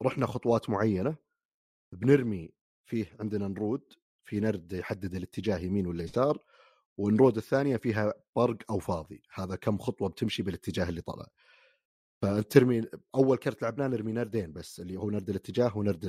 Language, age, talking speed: Arabic, 30-49, 140 wpm